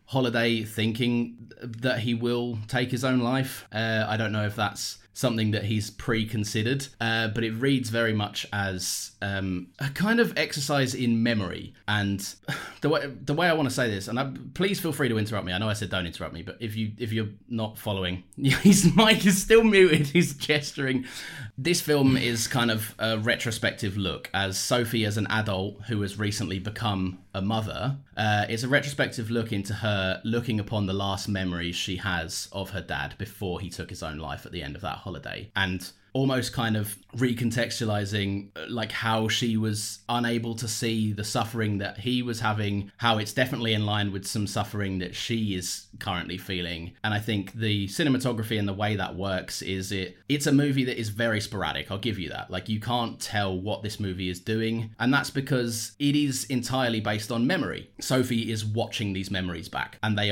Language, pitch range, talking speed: English, 100-120 Hz, 200 wpm